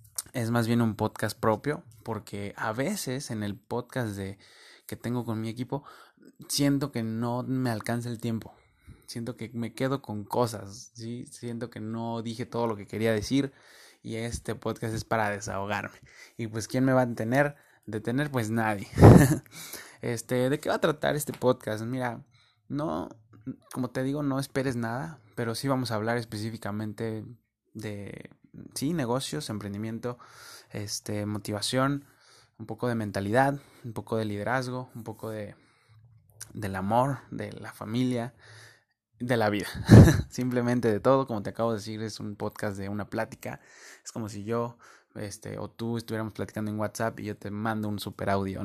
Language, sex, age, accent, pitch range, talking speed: Spanish, male, 20-39, Mexican, 105-125 Hz, 170 wpm